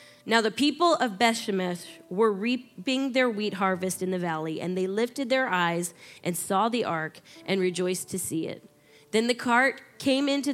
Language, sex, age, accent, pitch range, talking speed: English, female, 20-39, American, 185-230 Hz, 180 wpm